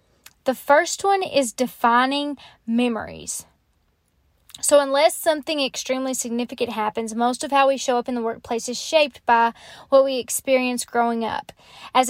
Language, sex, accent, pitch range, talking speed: English, female, American, 235-275 Hz, 150 wpm